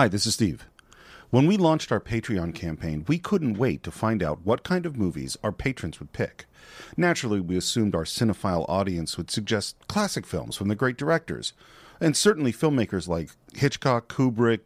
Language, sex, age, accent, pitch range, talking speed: English, male, 40-59, American, 95-135 Hz, 180 wpm